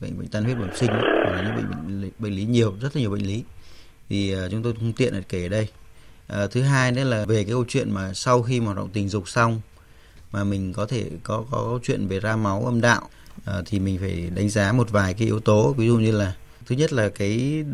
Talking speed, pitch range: 245 wpm, 100-120 Hz